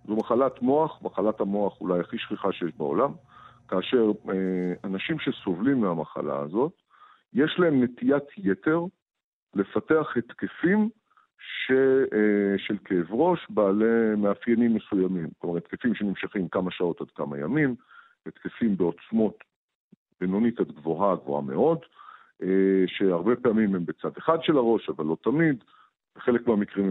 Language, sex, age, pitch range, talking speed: Hebrew, male, 50-69, 95-135 Hz, 130 wpm